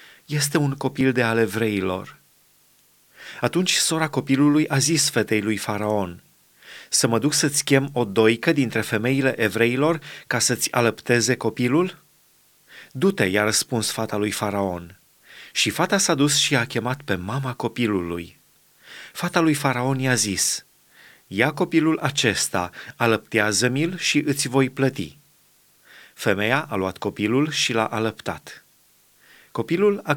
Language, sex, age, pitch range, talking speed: Romanian, male, 30-49, 110-145 Hz, 135 wpm